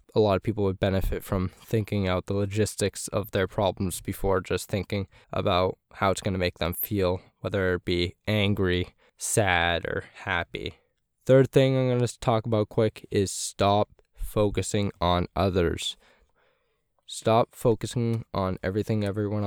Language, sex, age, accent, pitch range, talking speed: English, male, 10-29, American, 90-105 Hz, 150 wpm